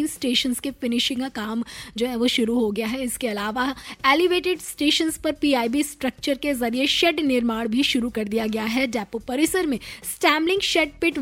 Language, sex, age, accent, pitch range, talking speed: Hindi, female, 20-39, native, 240-305 Hz, 175 wpm